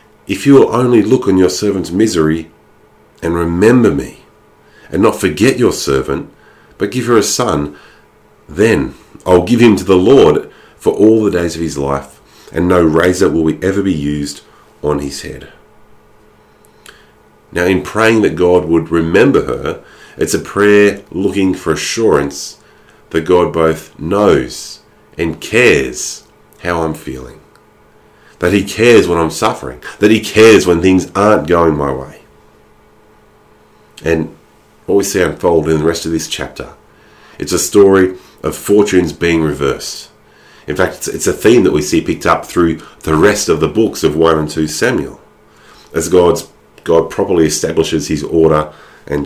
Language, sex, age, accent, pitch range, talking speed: English, male, 40-59, Australian, 80-100 Hz, 160 wpm